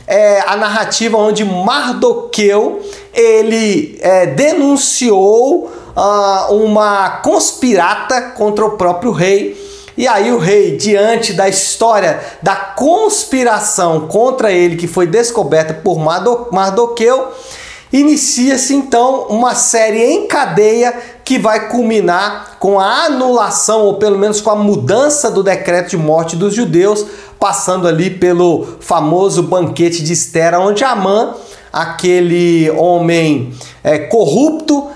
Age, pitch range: 40-59, 185-250 Hz